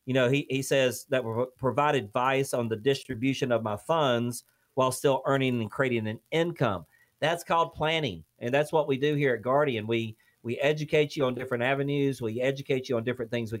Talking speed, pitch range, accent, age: 210 wpm, 125-160 Hz, American, 40-59